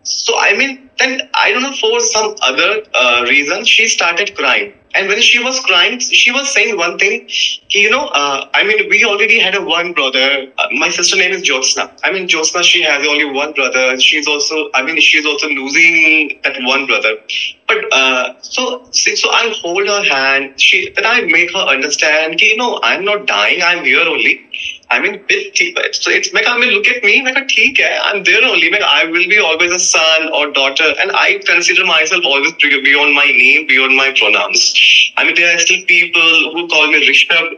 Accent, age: native, 20-39